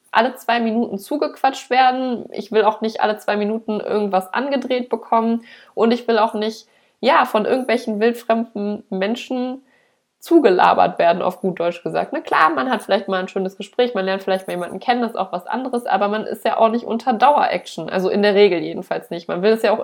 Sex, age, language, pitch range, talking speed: female, 20-39, German, 205-250 Hz, 210 wpm